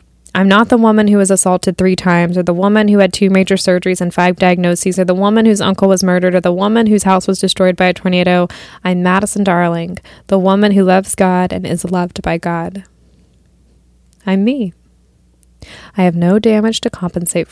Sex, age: female, 20-39